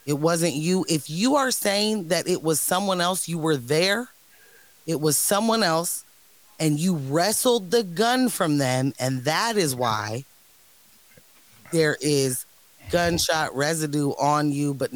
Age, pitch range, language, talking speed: 30-49, 150-190 Hz, English, 150 wpm